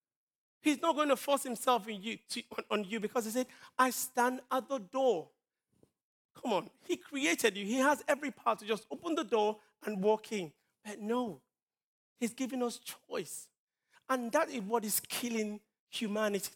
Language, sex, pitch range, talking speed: English, male, 190-240 Hz, 165 wpm